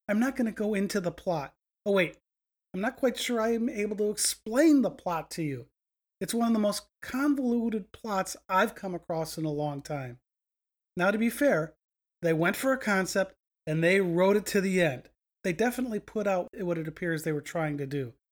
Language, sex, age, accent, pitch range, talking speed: English, male, 30-49, American, 170-230 Hz, 210 wpm